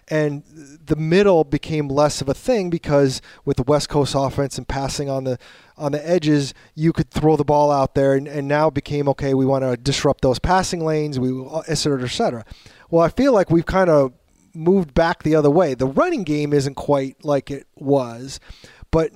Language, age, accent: English, 30-49, American